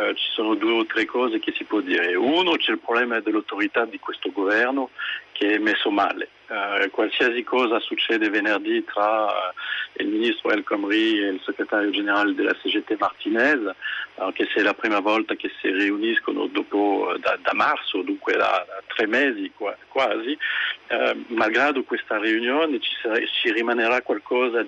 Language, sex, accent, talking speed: Italian, male, French, 175 wpm